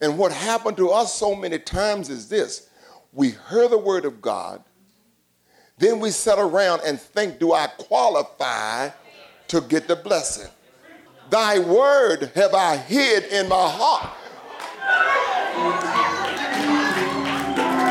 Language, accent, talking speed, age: English, American, 125 wpm, 50-69